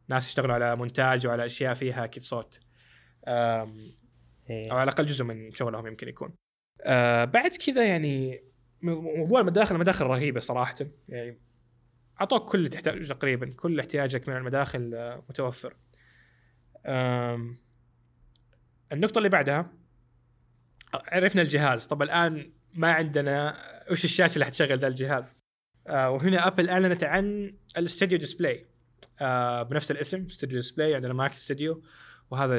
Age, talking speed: 20-39, 120 wpm